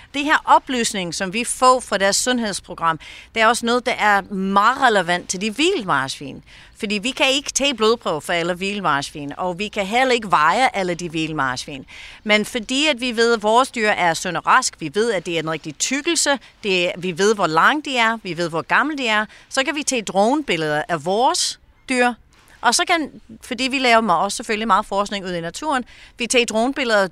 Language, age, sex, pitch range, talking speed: Danish, 40-59, female, 180-250 Hz, 210 wpm